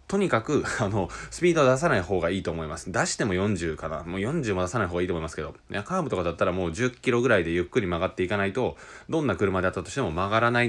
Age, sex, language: 20-39, male, Japanese